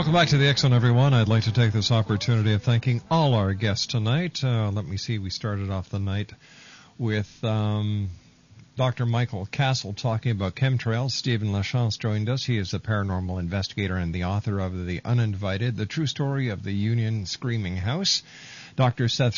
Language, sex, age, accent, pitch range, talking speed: English, male, 50-69, American, 100-135 Hz, 185 wpm